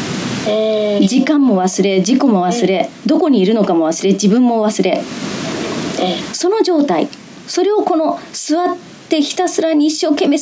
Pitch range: 210-320 Hz